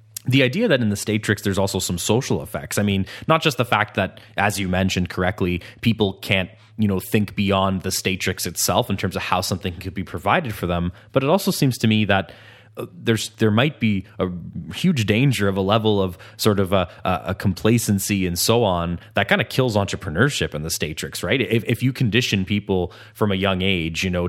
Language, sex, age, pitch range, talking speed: English, male, 20-39, 95-110 Hz, 215 wpm